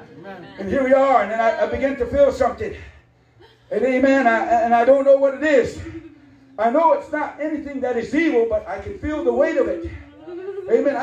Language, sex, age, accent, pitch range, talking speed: English, male, 50-69, American, 270-315 Hz, 210 wpm